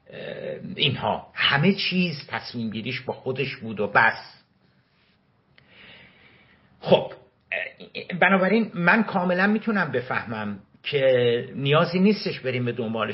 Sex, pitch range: male, 110-155 Hz